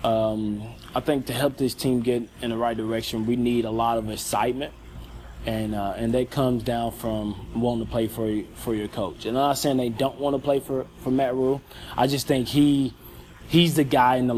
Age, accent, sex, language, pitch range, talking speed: 20-39, American, male, English, 110-130 Hz, 230 wpm